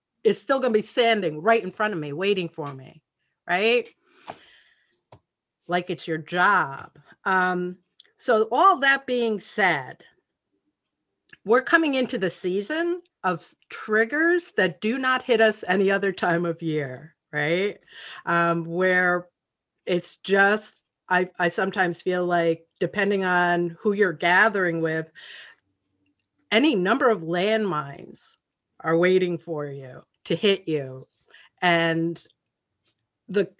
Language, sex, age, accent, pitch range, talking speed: English, female, 40-59, American, 170-235 Hz, 125 wpm